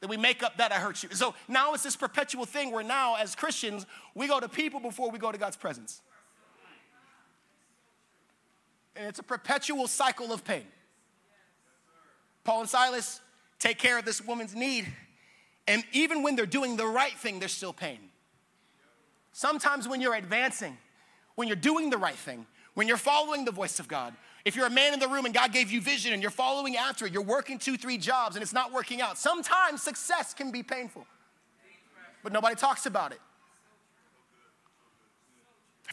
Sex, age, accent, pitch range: male, 30-49, American, 210-270 Hz